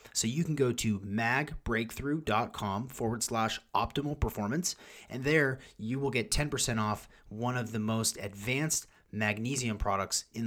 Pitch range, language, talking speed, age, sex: 105-125 Hz, English, 145 wpm, 30-49, male